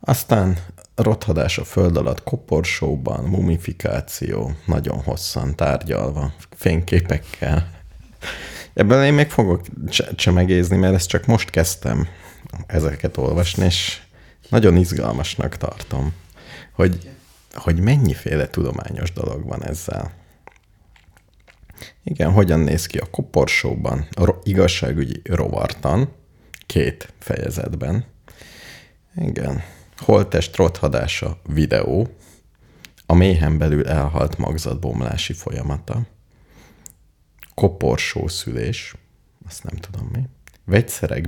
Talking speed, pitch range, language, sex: 95 wpm, 80-105 Hz, Hungarian, male